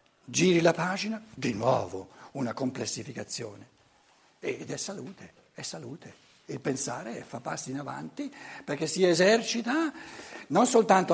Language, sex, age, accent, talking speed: Italian, male, 60-79, native, 125 wpm